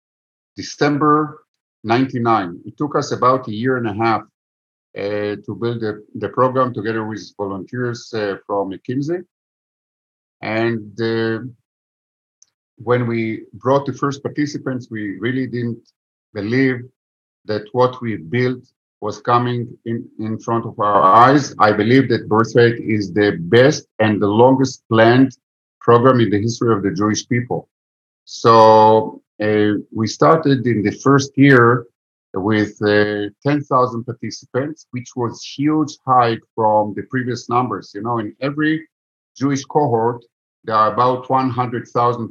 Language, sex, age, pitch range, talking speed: English, male, 50-69, 105-130 Hz, 135 wpm